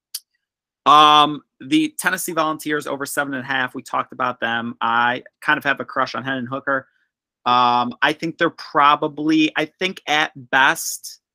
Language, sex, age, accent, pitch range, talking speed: English, male, 30-49, American, 120-150 Hz, 170 wpm